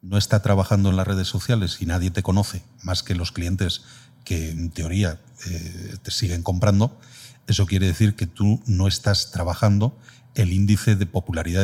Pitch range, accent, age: 95-125 Hz, Spanish, 40-59